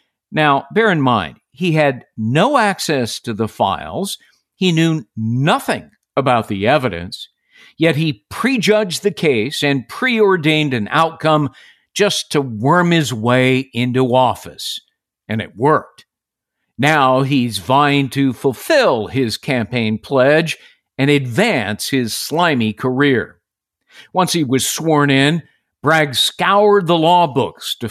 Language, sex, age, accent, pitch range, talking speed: English, male, 50-69, American, 130-170 Hz, 130 wpm